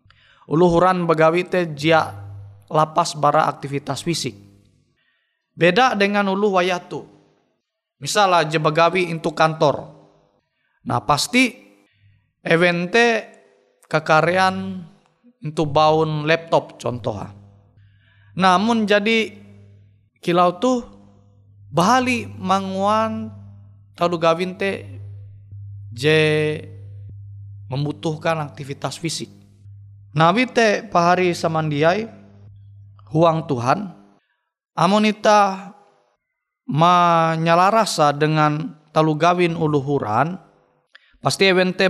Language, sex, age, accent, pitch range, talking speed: Indonesian, male, 20-39, native, 125-185 Hz, 75 wpm